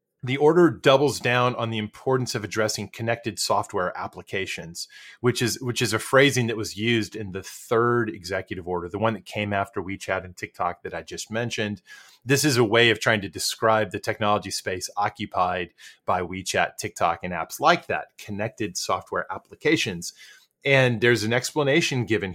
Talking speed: 175 wpm